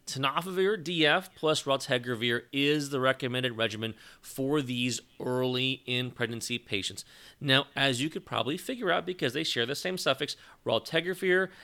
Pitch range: 120-145 Hz